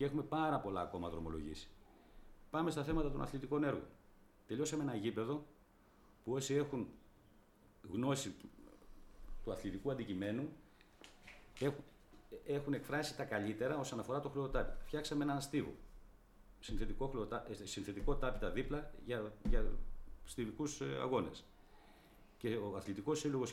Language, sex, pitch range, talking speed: Greek, male, 100-140 Hz, 115 wpm